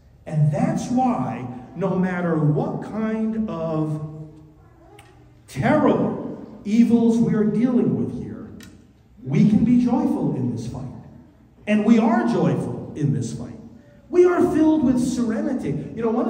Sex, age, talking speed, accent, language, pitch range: male, 50-69, 135 wpm, American, English, 150-225 Hz